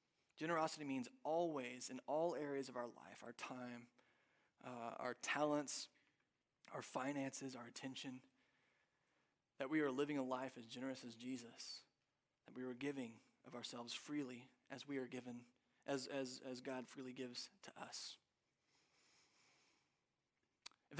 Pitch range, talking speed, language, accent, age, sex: 140-190 Hz, 135 wpm, English, American, 20-39, male